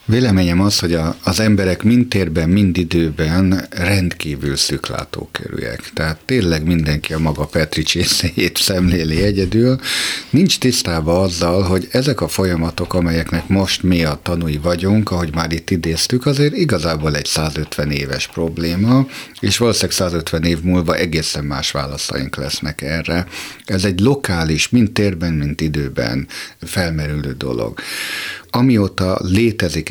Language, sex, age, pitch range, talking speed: Hungarian, male, 50-69, 80-105 Hz, 130 wpm